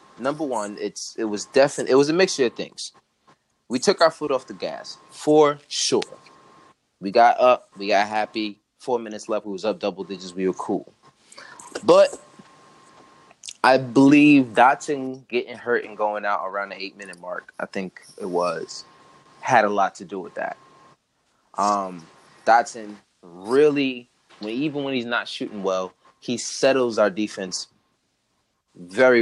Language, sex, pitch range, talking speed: English, male, 100-130 Hz, 160 wpm